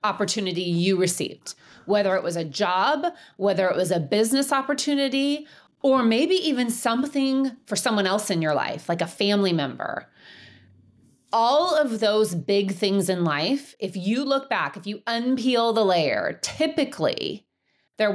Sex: female